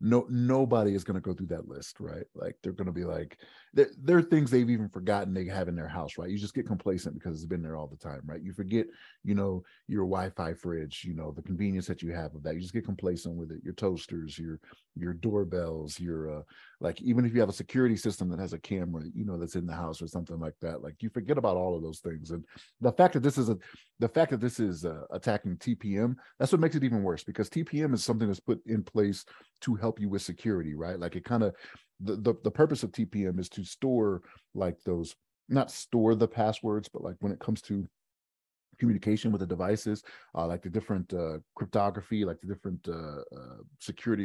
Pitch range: 85-110 Hz